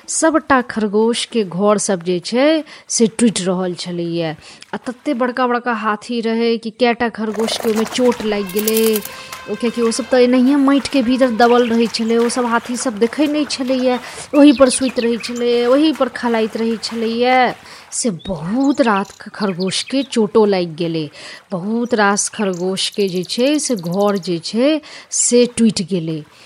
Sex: female